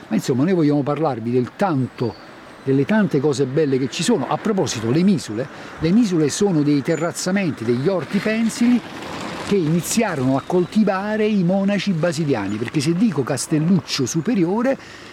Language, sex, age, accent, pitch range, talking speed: Italian, male, 50-69, native, 130-190 Hz, 150 wpm